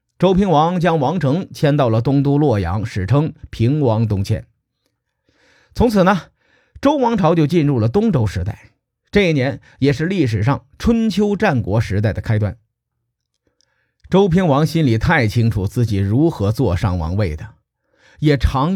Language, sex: Chinese, male